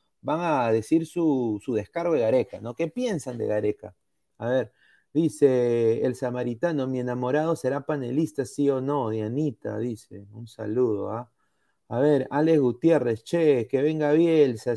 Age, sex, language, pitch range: 30-49, male, Spanish, 120-155 Hz